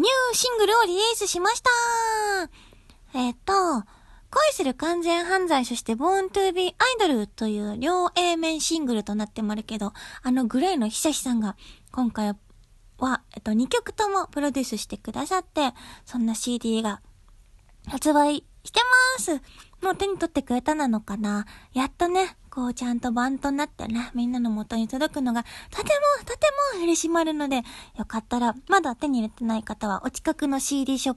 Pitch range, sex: 240-360 Hz, female